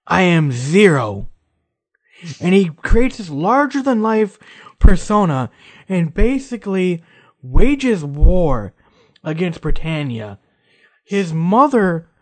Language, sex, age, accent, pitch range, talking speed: English, male, 20-39, American, 130-200 Hz, 95 wpm